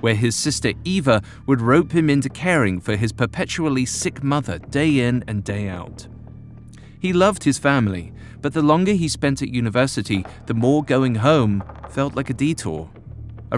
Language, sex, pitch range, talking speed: English, male, 105-145 Hz, 170 wpm